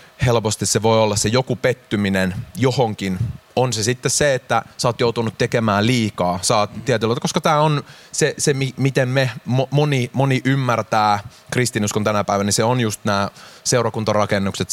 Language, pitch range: Finnish, 100-120 Hz